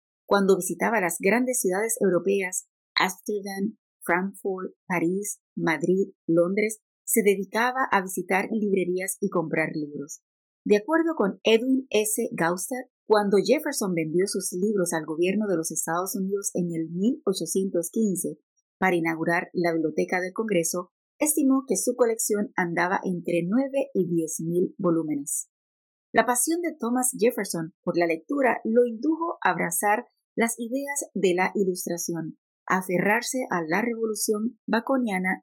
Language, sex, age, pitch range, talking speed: Spanish, female, 30-49, 175-230 Hz, 130 wpm